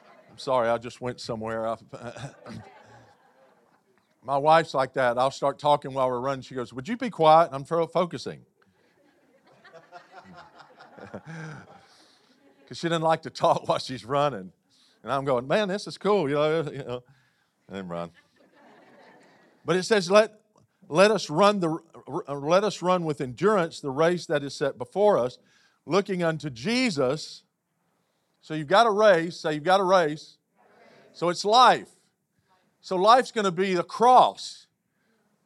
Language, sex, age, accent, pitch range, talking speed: English, male, 40-59, American, 155-205 Hz, 155 wpm